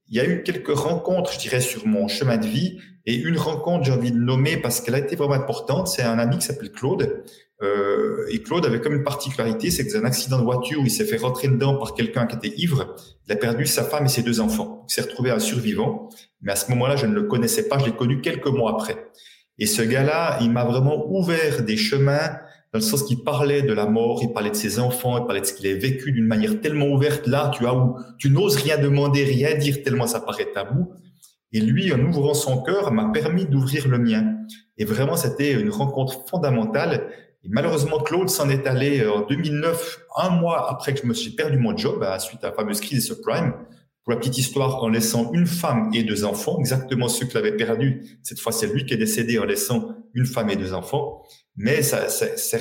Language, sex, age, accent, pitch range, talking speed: French, male, 40-59, French, 115-160 Hz, 240 wpm